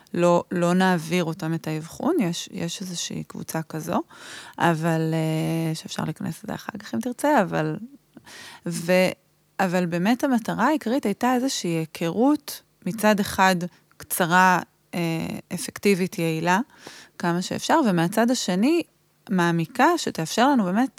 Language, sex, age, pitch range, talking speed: Hebrew, female, 20-39, 170-215 Hz, 115 wpm